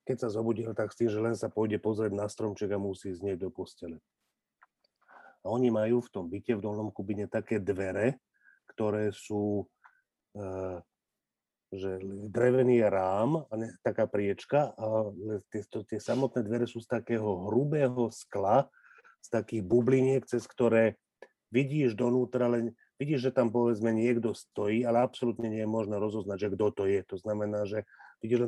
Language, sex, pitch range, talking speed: Slovak, male, 105-120 Hz, 160 wpm